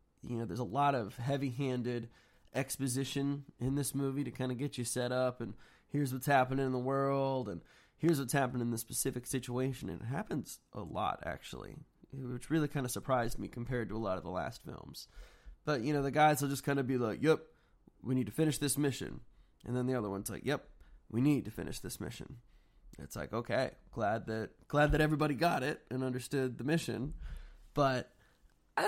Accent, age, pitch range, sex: American, 20-39, 120-145 Hz, male